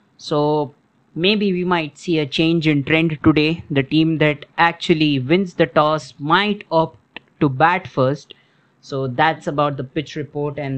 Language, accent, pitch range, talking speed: English, Indian, 140-165 Hz, 160 wpm